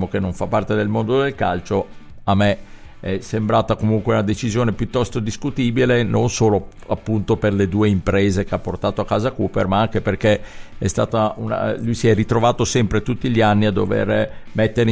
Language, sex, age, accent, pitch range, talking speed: Italian, male, 50-69, native, 95-115 Hz, 185 wpm